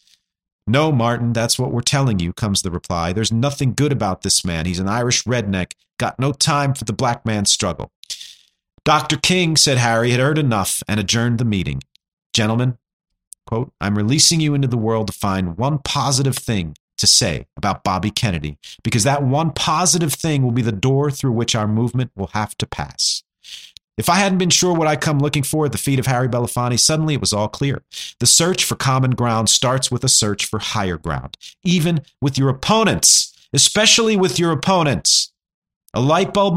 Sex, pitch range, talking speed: male, 115-150 Hz, 195 wpm